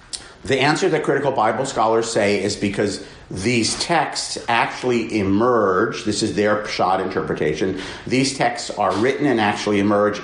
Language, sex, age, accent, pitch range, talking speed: English, male, 50-69, American, 105-120 Hz, 145 wpm